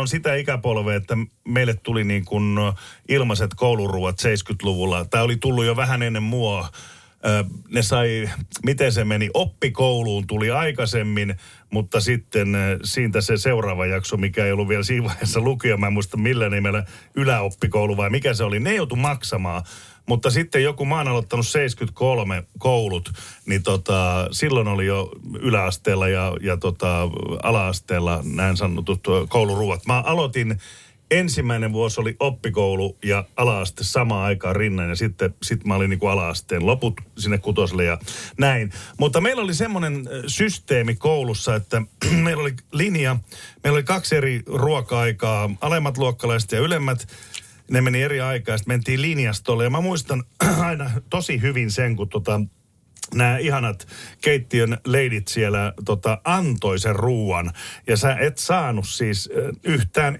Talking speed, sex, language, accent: 145 wpm, male, Finnish, native